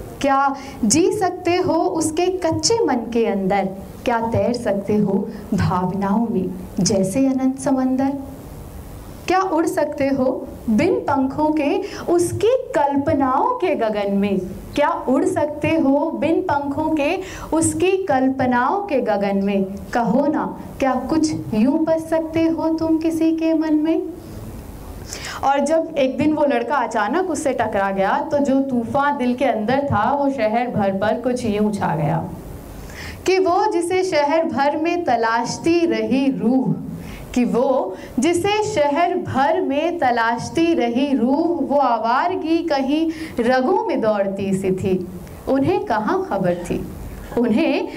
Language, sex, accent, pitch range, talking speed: Hindi, female, native, 230-325 Hz, 135 wpm